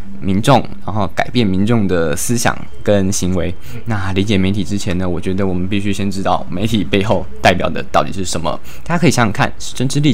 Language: Chinese